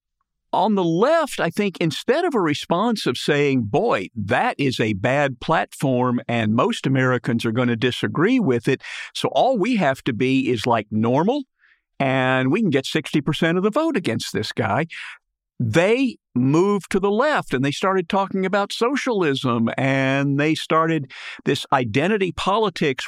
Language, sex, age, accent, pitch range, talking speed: English, male, 50-69, American, 125-160 Hz, 165 wpm